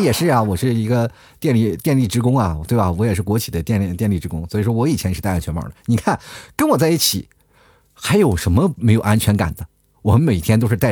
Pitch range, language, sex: 100-160 Hz, Chinese, male